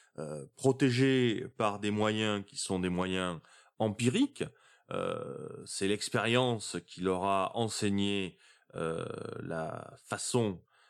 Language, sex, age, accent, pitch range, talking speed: French, male, 30-49, French, 95-120 Hz, 110 wpm